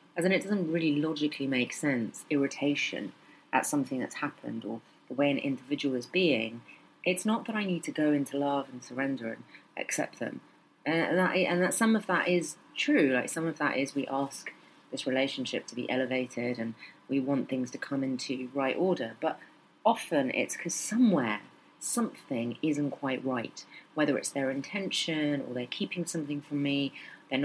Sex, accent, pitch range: female, British, 135-170 Hz